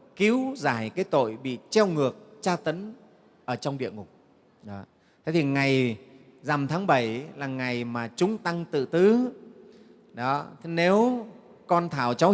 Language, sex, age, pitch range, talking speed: Vietnamese, male, 30-49, 130-170 Hz, 160 wpm